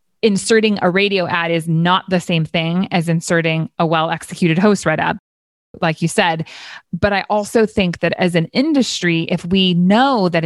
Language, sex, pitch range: English, female, 165-215 Hz